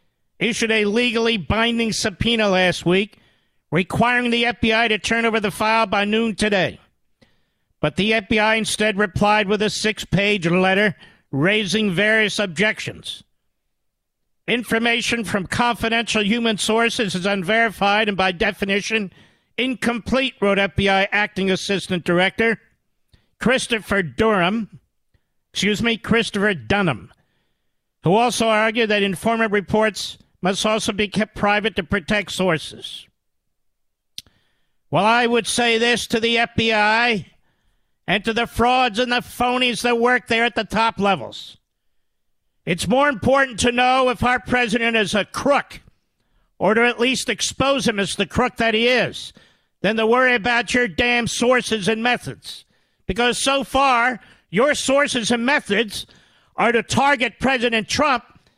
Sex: male